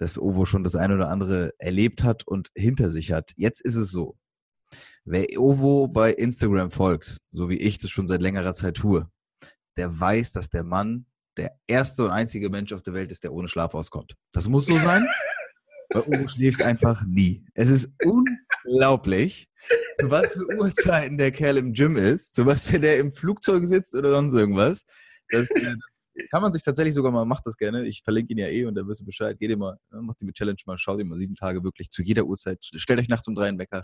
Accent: German